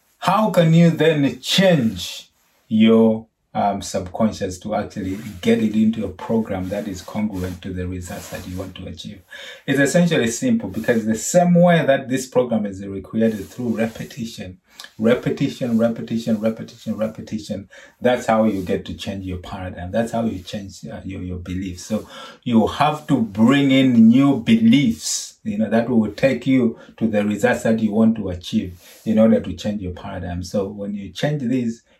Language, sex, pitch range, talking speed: English, male, 100-140 Hz, 175 wpm